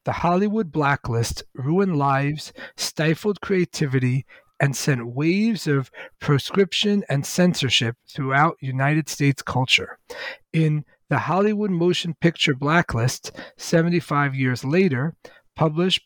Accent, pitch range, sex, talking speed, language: American, 135-180 Hz, male, 105 wpm, English